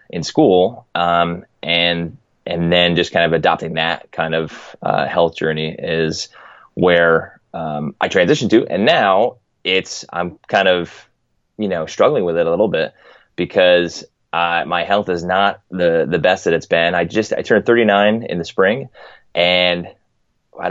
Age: 20-39